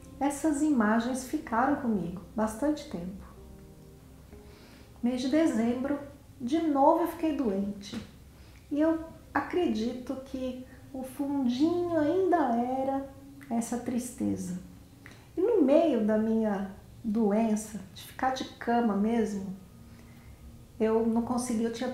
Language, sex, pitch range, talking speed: Portuguese, female, 215-265 Hz, 105 wpm